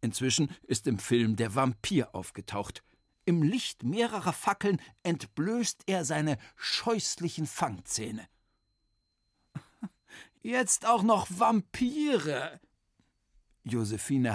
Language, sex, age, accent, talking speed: German, male, 60-79, German, 90 wpm